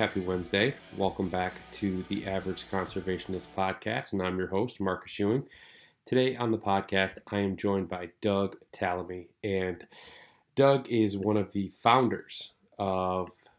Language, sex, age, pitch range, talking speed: English, male, 30-49, 90-105 Hz, 145 wpm